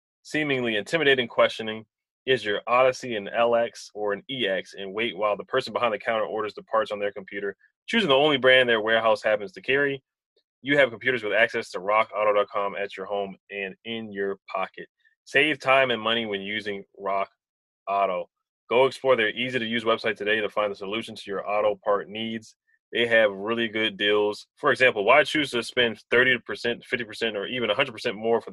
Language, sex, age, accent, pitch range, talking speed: English, male, 20-39, American, 105-130 Hz, 190 wpm